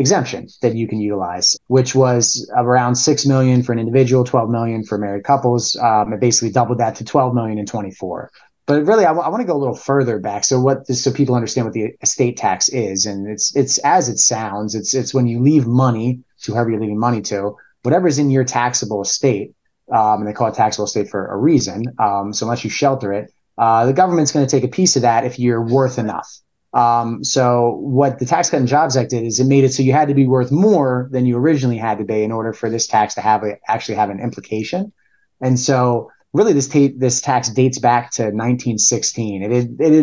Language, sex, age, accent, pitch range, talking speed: English, male, 30-49, American, 110-135 Hz, 235 wpm